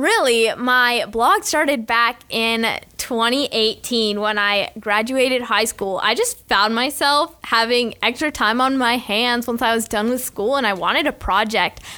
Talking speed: 165 wpm